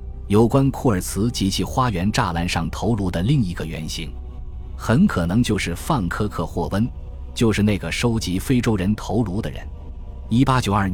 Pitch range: 80-110 Hz